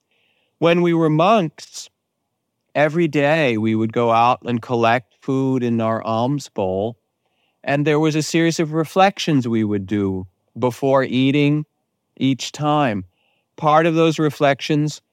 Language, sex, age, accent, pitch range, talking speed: English, male, 50-69, American, 115-145 Hz, 140 wpm